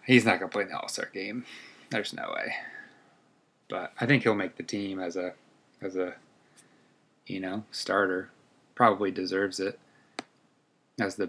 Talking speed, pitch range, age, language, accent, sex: 165 wpm, 100-110 Hz, 20-39, English, American, male